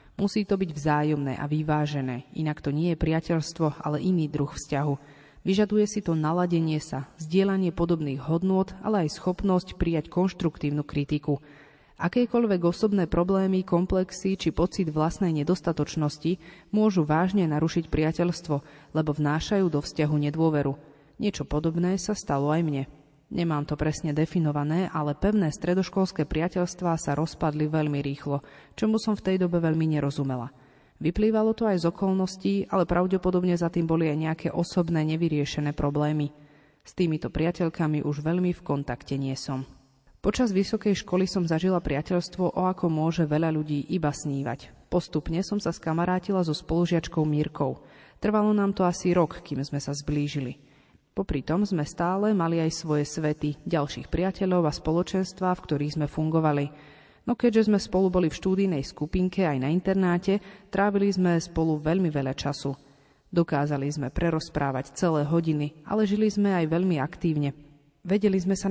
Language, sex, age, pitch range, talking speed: Slovak, female, 30-49, 150-185 Hz, 150 wpm